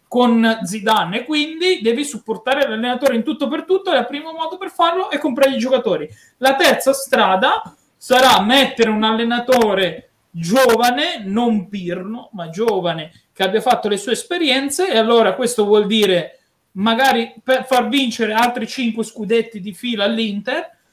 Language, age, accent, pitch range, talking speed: Italian, 30-49, native, 205-245 Hz, 155 wpm